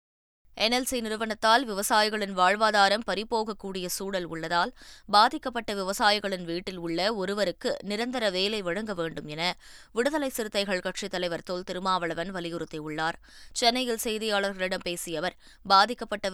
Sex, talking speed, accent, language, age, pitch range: female, 105 wpm, native, Tamil, 20-39, 150-200 Hz